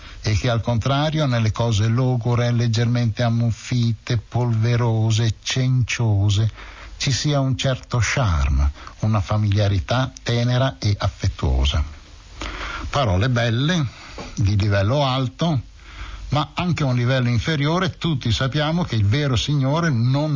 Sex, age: male, 60-79